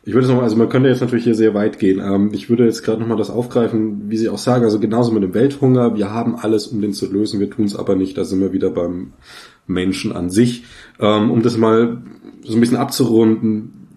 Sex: male